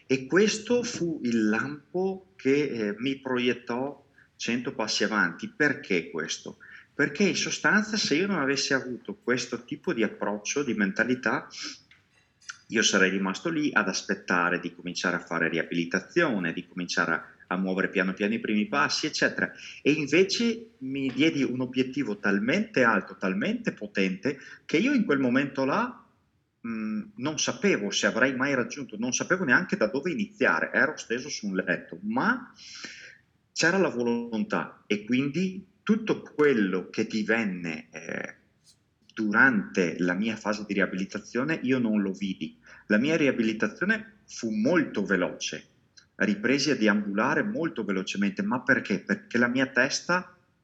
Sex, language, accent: male, Italian, native